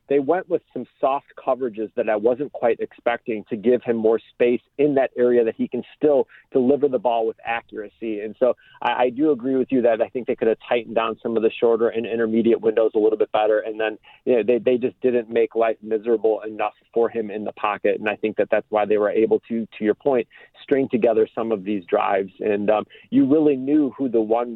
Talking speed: 240 wpm